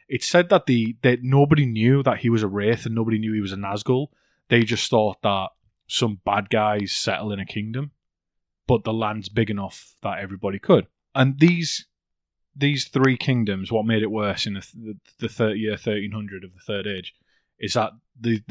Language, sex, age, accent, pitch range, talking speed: English, male, 20-39, British, 100-120 Hz, 200 wpm